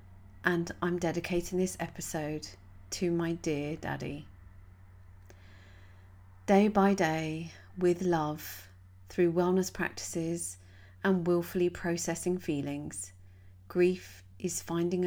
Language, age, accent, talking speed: English, 40-59, British, 95 wpm